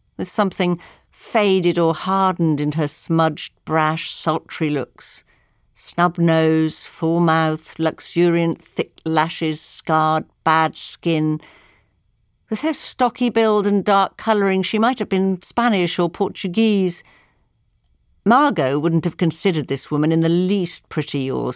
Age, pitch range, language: 50-69, 155-210 Hz, English